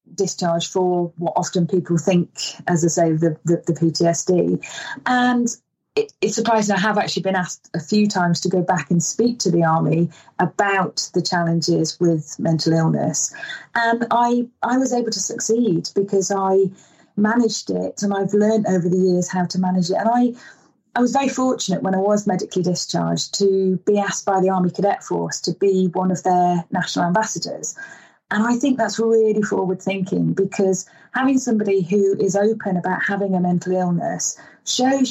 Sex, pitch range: female, 180-220 Hz